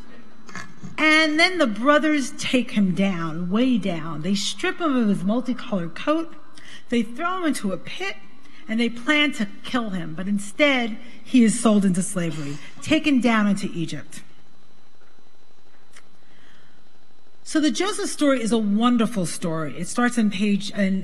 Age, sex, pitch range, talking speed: 40-59, female, 190-245 Hz, 150 wpm